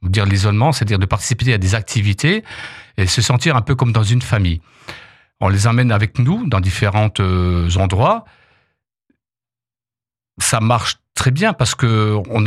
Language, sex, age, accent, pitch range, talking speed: French, male, 50-69, French, 100-125 Hz, 150 wpm